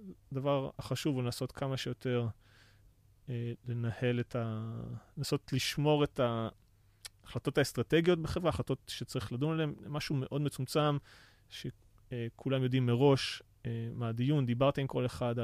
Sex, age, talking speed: male, 30-49, 120 wpm